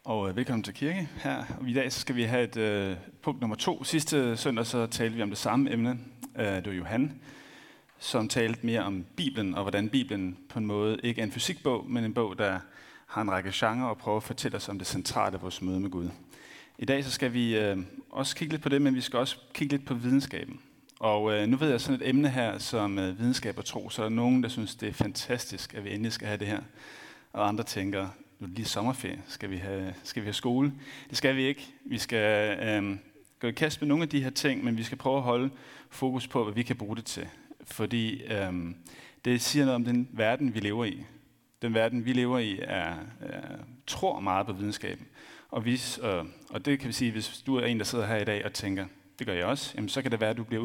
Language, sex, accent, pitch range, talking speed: Danish, male, native, 105-130 Hz, 255 wpm